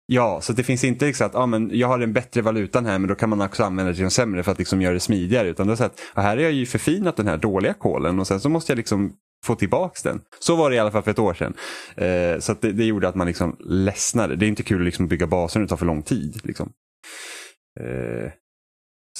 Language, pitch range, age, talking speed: Swedish, 85-110 Hz, 30-49, 280 wpm